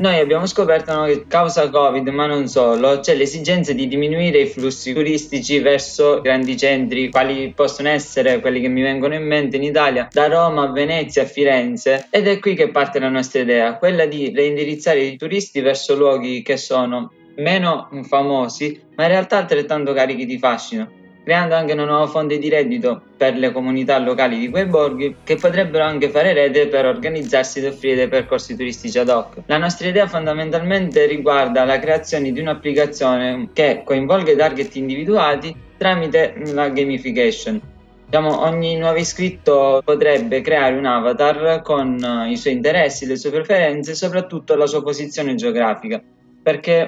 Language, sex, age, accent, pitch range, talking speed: Italian, male, 20-39, native, 135-160 Hz, 165 wpm